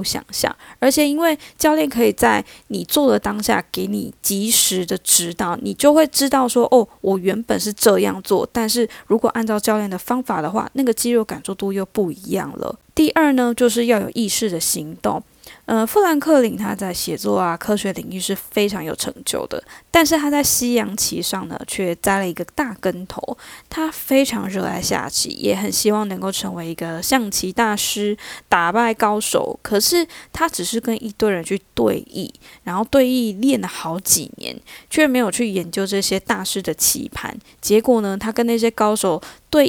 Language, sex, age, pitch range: Chinese, female, 10-29, 190-255 Hz